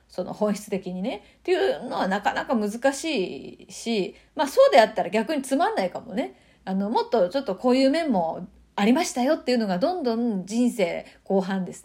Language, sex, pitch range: Japanese, female, 190-270 Hz